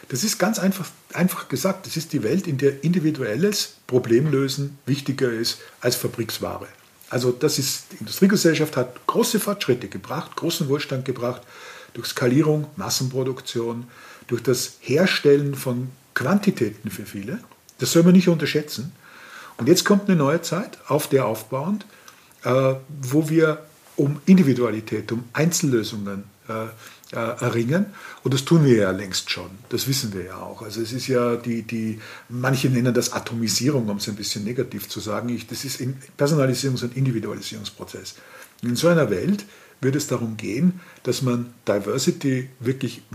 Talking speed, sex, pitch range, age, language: 155 wpm, male, 115-155 Hz, 50-69, German